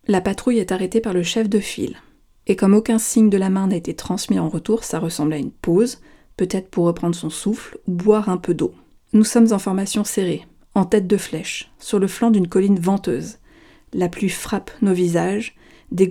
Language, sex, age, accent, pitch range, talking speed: French, female, 40-59, French, 180-210 Hz, 210 wpm